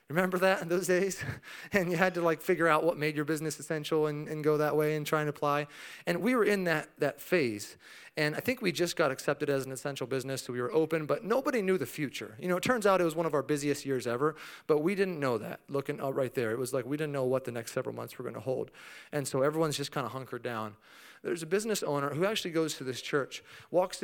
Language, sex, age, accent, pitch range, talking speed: English, male, 30-49, American, 135-180 Hz, 270 wpm